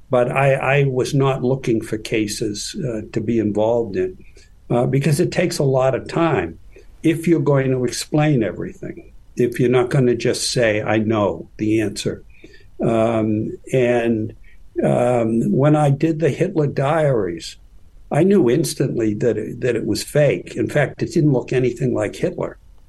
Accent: American